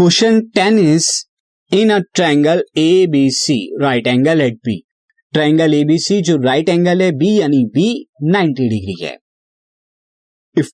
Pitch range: 130-185 Hz